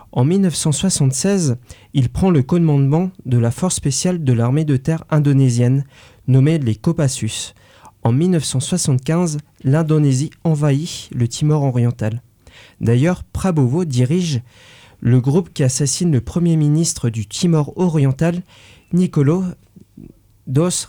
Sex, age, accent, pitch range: male, 40-59, French, 125-170 Hz